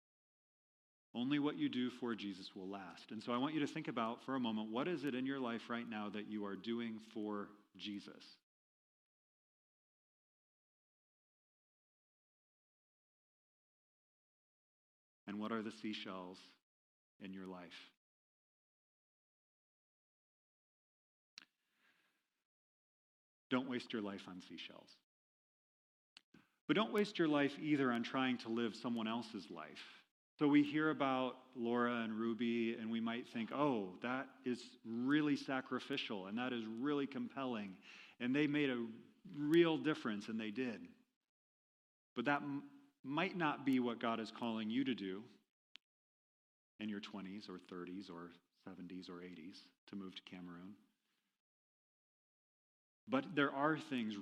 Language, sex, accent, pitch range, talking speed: English, male, American, 100-135 Hz, 130 wpm